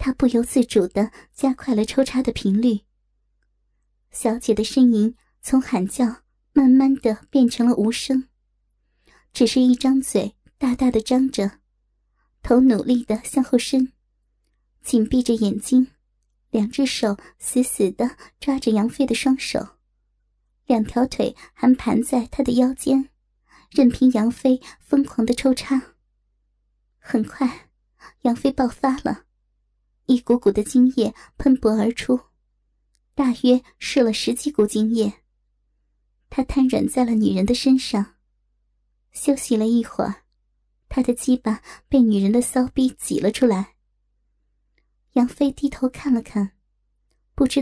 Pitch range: 225-265 Hz